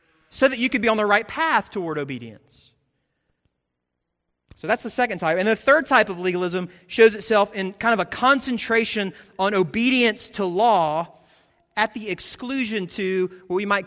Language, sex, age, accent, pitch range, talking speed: English, male, 30-49, American, 145-205 Hz, 175 wpm